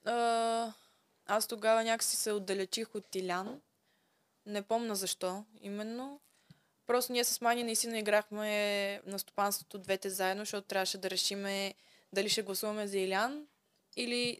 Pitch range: 195-230 Hz